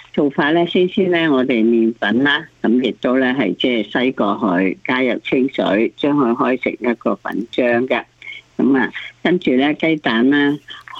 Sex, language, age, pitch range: female, Chinese, 50-69, 115-150 Hz